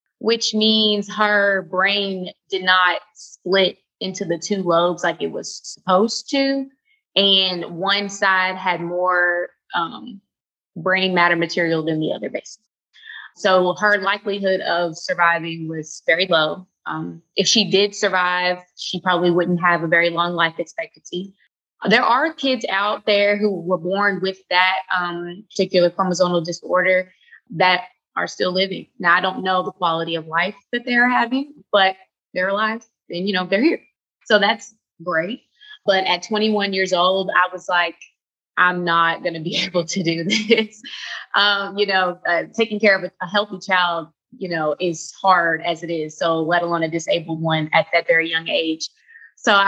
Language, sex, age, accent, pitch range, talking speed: English, female, 20-39, American, 175-205 Hz, 165 wpm